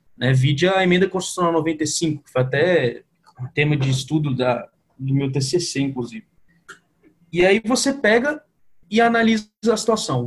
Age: 20-39